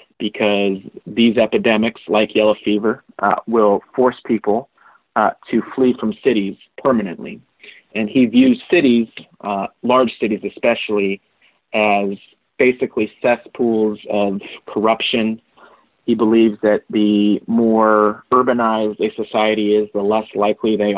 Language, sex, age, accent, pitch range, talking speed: English, male, 30-49, American, 105-115 Hz, 120 wpm